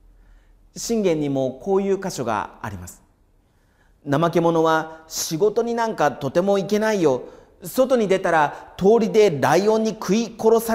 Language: Japanese